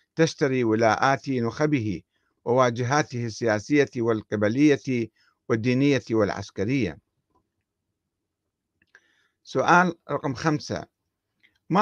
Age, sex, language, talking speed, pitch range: 50-69, male, Arabic, 60 wpm, 115-145 Hz